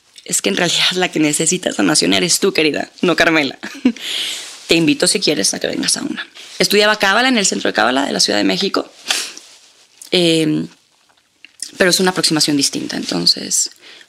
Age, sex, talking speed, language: 20-39, female, 175 wpm, Spanish